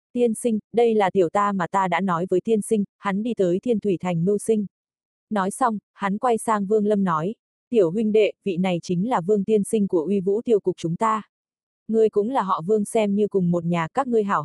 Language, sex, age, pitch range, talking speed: Vietnamese, female, 20-39, 185-225 Hz, 245 wpm